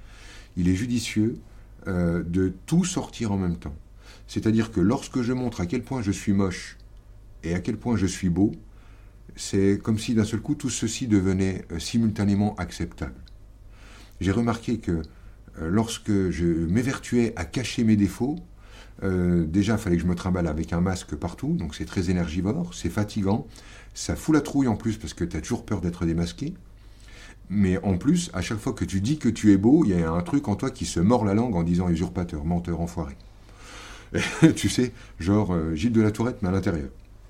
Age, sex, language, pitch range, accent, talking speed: 60-79, male, French, 90-110 Hz, French, 205 wpm